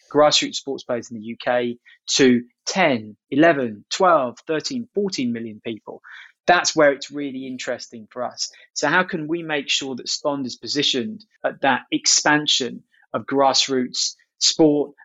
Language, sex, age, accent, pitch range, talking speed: English, male, 20-39, British, 125-155 Hz, 150 wpm